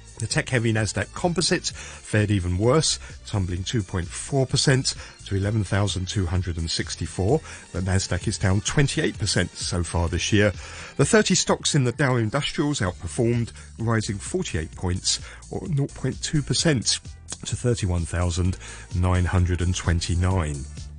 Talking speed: 95 wpm